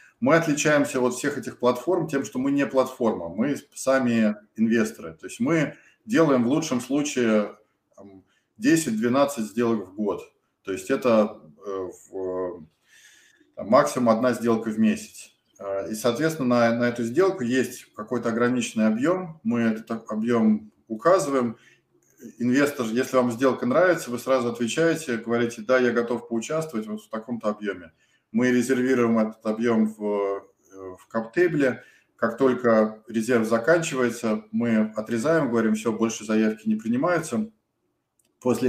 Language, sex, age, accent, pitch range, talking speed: Russian, male, 20-39, native, 110-130 Hz, 125 wpm